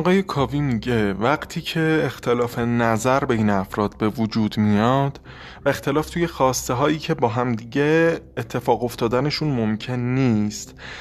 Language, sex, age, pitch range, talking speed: Persian, male, 20-39, 115-150 Hz, 125 wpm